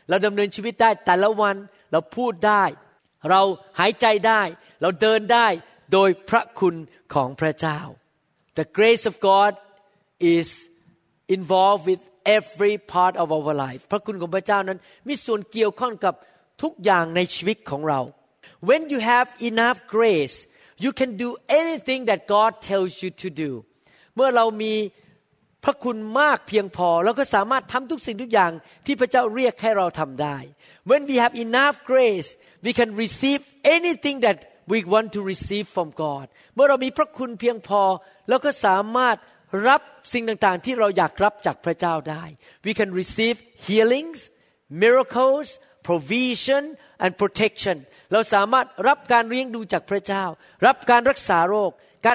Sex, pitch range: male, 180-240 Hz